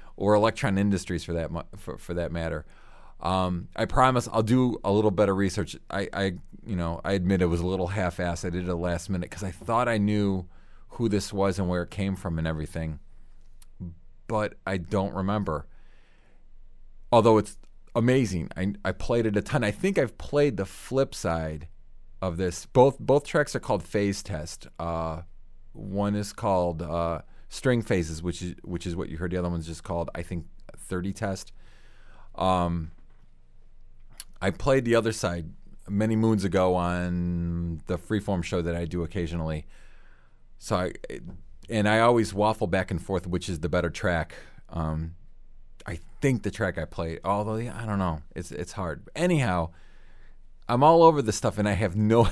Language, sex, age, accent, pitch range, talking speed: English, male, 30-49, American, 85-105 Hz, 185 wpm